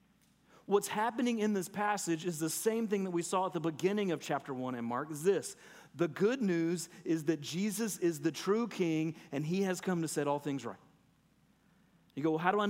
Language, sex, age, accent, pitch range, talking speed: English, male, 40-59, American, 155-200 Hz, 220 wpm